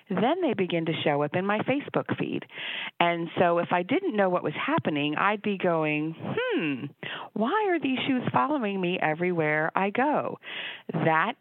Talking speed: 175 wpm